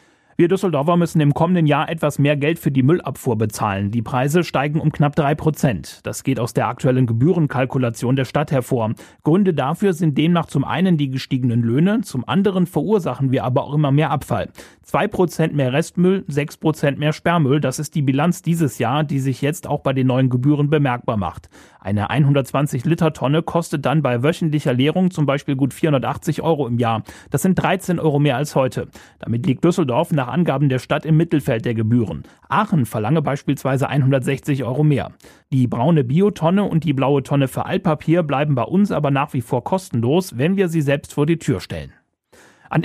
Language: German